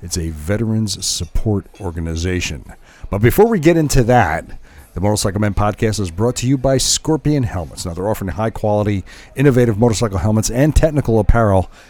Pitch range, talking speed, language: 90-130 Hz, 160 wpm, English